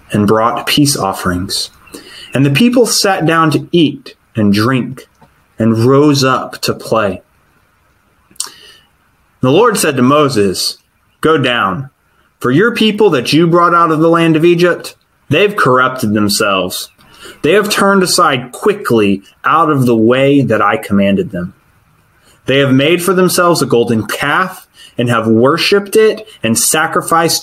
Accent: American